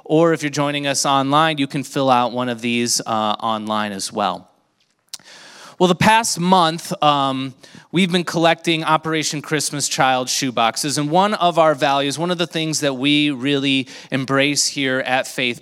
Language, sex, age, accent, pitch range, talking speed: English, male, 30-49, American, 135-165 Hz, 165 wpm